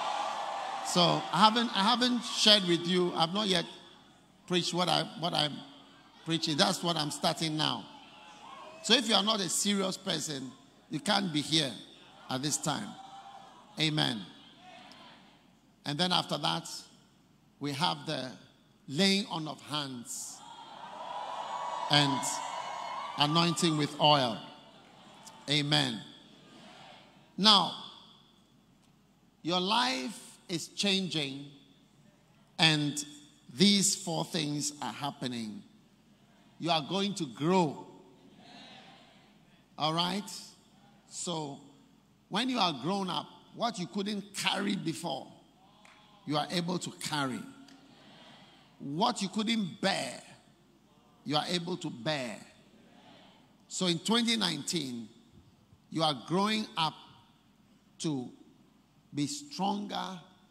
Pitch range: 150-200 Hz